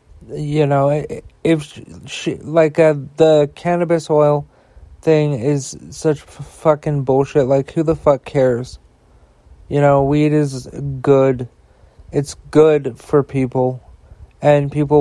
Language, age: English, 40-59